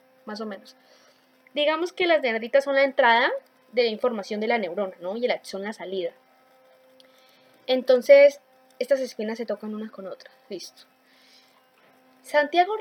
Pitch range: 215-265 Hz